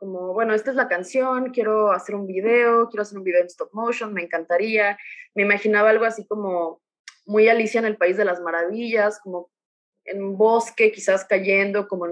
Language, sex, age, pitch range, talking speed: Spanish, female, 20-39, 190-240 Hz, 200 wpm